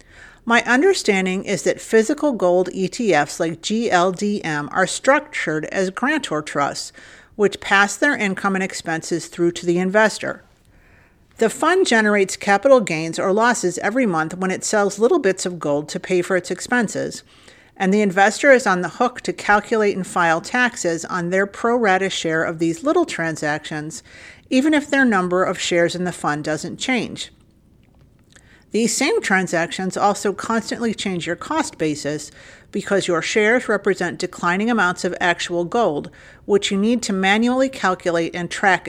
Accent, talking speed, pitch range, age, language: American, 160 wpm, 175-230 Hz, 50-69, English